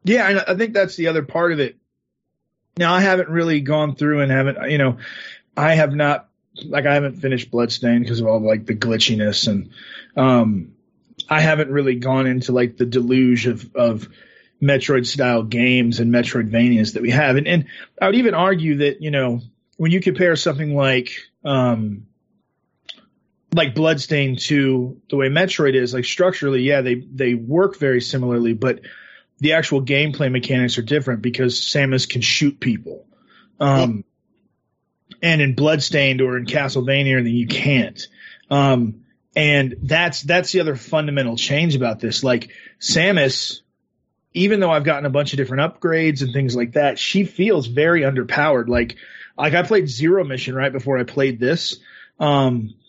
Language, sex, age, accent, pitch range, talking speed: English, male, 30-49, American, 125-155 Hz, 165 wpm